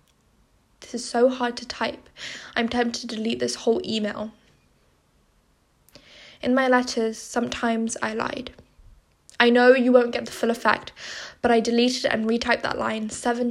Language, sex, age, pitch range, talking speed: English, female, 10-29, 235-255 Hz, 155 wpm